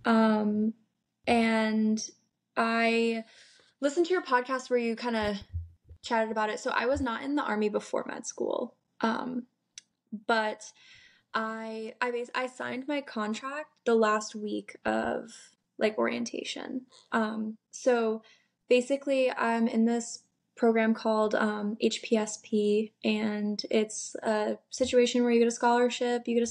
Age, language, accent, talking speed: 10-29, English, American, 140 wpm